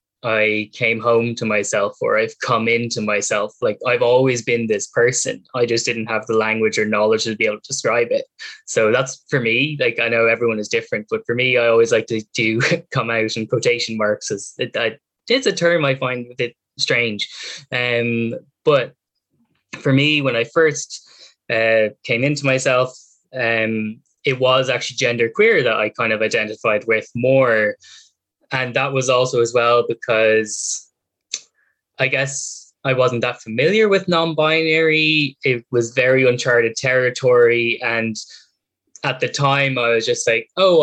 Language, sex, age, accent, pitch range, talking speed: English, male, 10-29, Irish, 115-155 Hz, 170 wpm